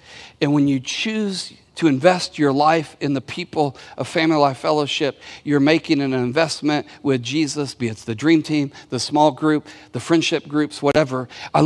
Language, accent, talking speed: English, American, 175 wpm